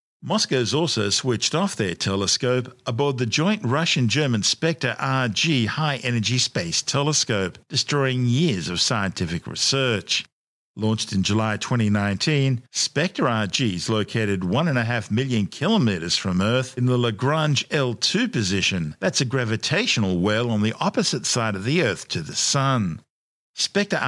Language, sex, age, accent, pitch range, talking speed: English, male, 50-69, Australian, 105-140 Hz, 125 wpm